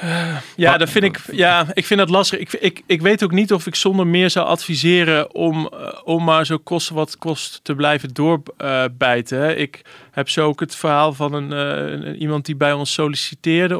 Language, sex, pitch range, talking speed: English, male, 145-170 Hz, 180 wpm